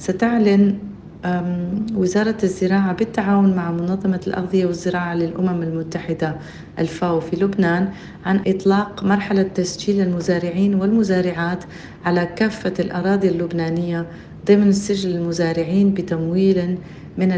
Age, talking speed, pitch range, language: 40-59, 95 wpm, 175-200 Hz, Arabic